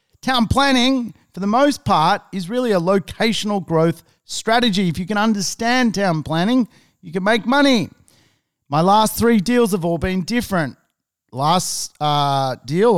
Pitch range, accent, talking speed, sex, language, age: 155-220 Hz, Australian, 155 wpm, male, English, 40-59